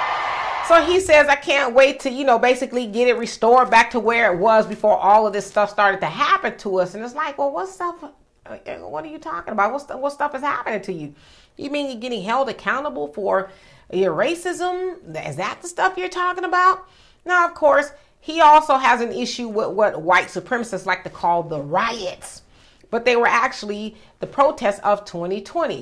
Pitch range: 210-310 Hz